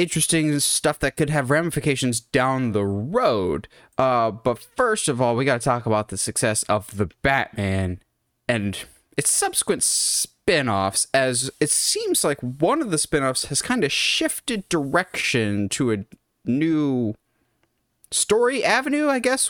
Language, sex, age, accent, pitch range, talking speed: English, male, 20-39, American, 115-170 Hz, 150 wpm